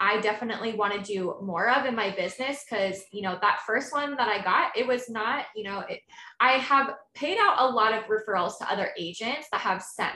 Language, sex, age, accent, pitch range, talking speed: English, female, 20-39, American, 195-245 Hz, 230 wpm